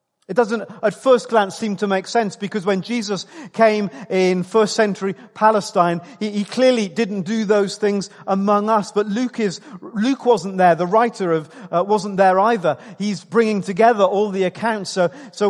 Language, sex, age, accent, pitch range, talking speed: English, male, 40-59, British, 185-230 Hz, 180 wpm